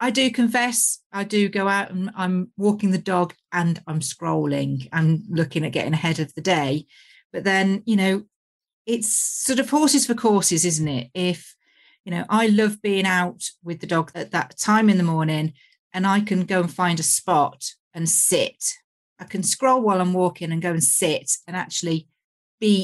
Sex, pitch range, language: female, 160-220 Hz, English